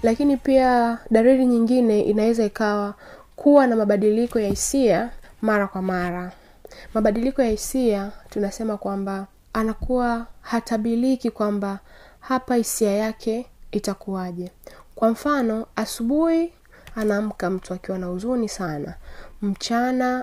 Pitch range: 200-250 Hz